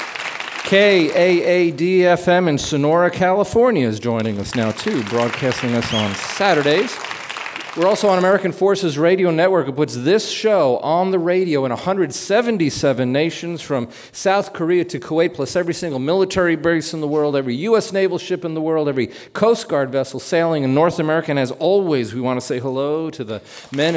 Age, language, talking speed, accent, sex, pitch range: 40-59, English, 175 wpm, American, male, 130-180 Hz